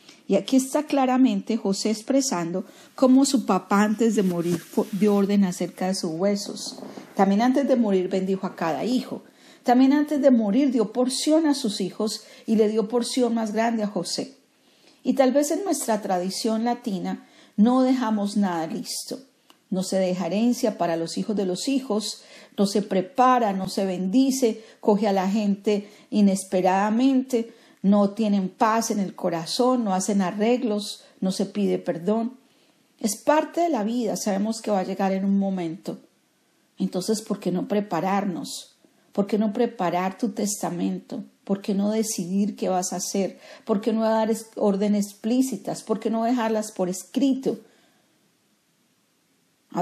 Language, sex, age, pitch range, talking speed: Spanish, female, 40-59, 195-245 Hz, 160 wpm